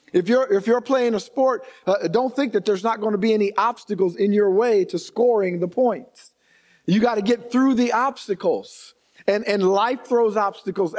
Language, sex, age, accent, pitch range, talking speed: English, male, 50-69, American, 225-295 Hz, 200 wpm